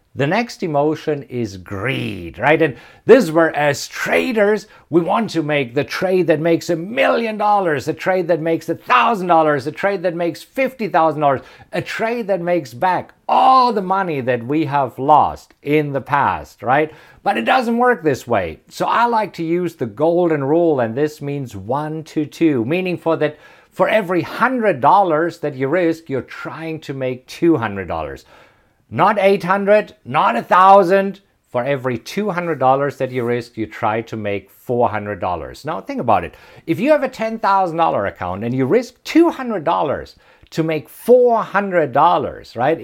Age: 50-69